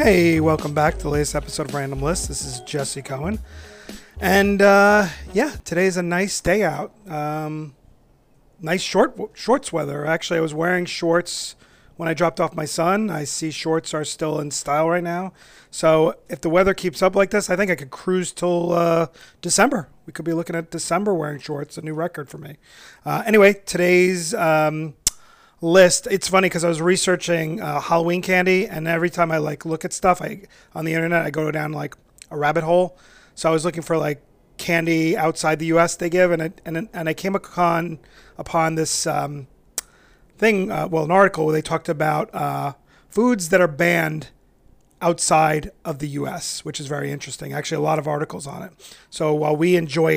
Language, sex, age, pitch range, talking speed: English, male, 30-49, 155-180 Hz, 195 wpm